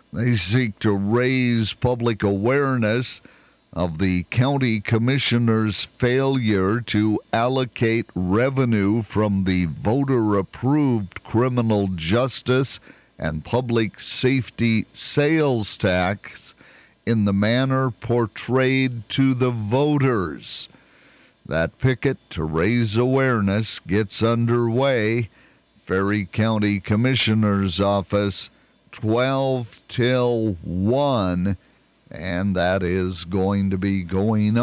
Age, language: 50-69, English